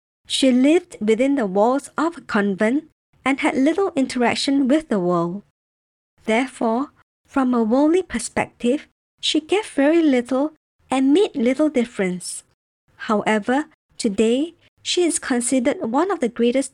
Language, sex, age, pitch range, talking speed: English, male, 50-69, 225-295 Hz, 135 wpm